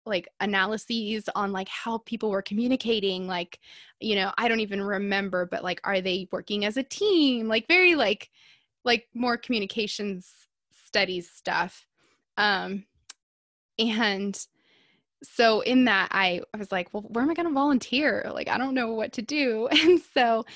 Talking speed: 165 wpm